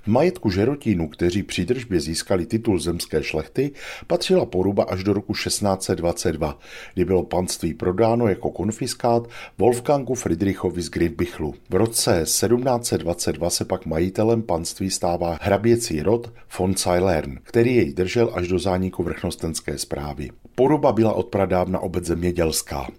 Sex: male